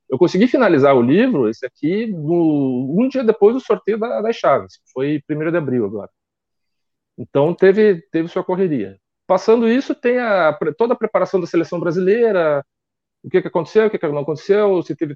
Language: Portuguese